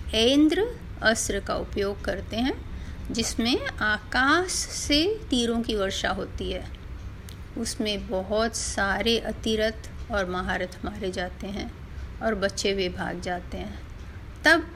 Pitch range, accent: 200-275 Hz, native